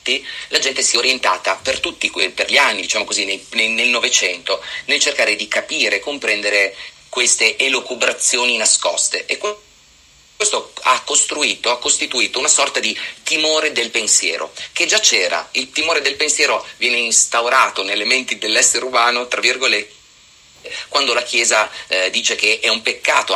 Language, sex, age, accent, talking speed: Italian, male, 30-49, native, 150 wpm